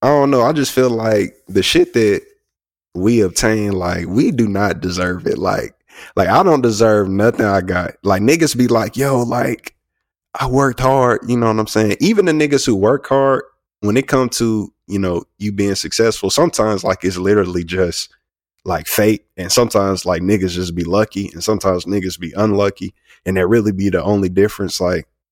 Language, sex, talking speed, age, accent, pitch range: English, male, 195 wpm, 20-39, American, 90-110 Hz